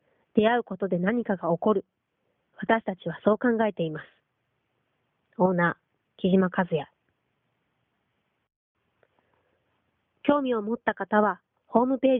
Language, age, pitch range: Japanese, 30-49, 180-230 Hz